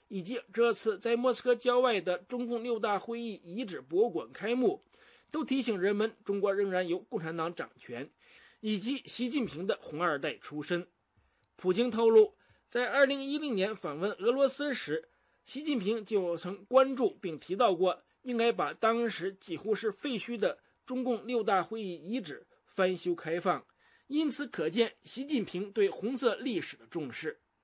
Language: English